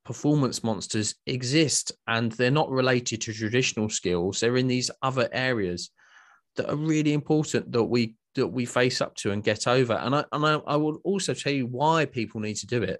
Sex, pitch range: male, 110-130 Hz